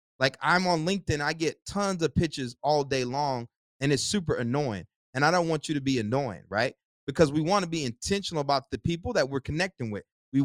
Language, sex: English, male